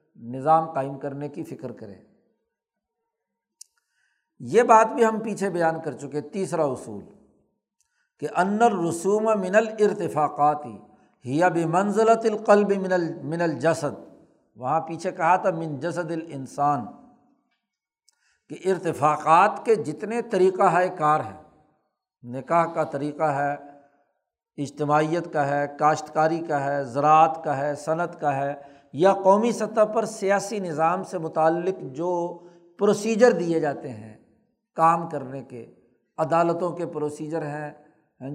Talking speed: 125 wpm